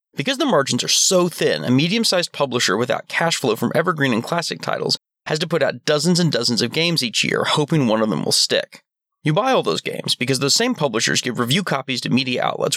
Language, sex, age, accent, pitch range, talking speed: English, male, 30-49, American, 130-180 Hz, 230 wpm